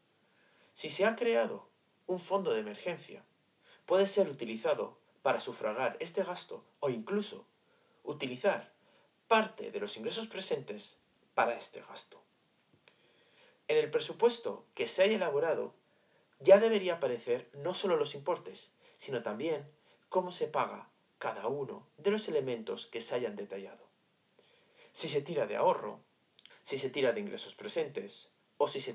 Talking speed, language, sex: 140 wpm, Spanish, male